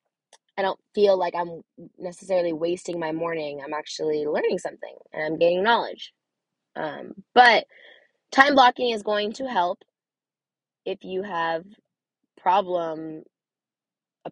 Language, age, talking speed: English, 20-39, 125 wpm